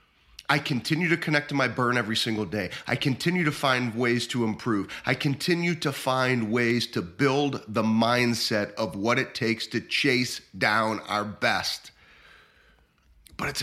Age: 30-49